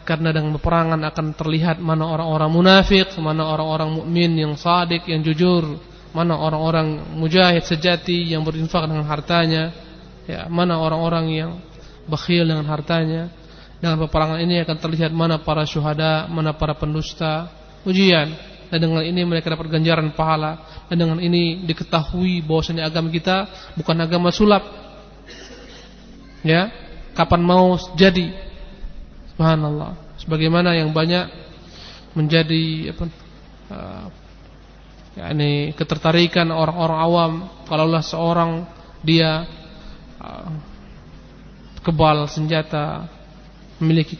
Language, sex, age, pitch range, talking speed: Indonesian, male, 20-39, 155-175 Hz, 110 wpm